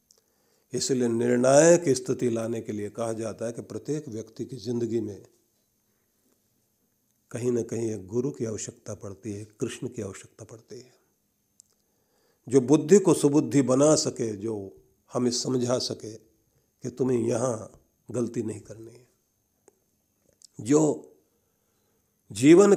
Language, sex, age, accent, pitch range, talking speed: Hindi, male, 50-69, native, 110-140 Hz, 125 wpm